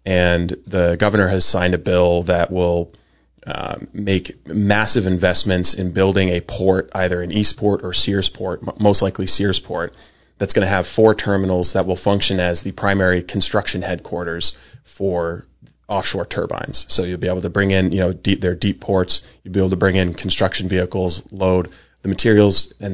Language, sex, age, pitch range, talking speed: English, male, 30-49, 90-100 Hz, 175 wpm